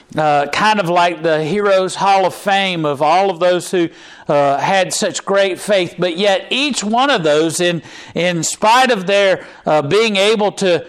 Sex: male